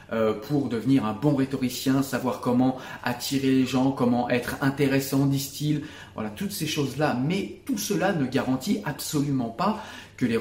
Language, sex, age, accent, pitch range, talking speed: French, male, 30-49, French, 115-150 Hz, 155 wpm